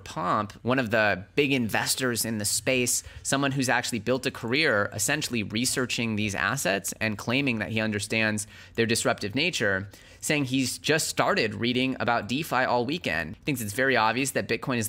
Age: 30-49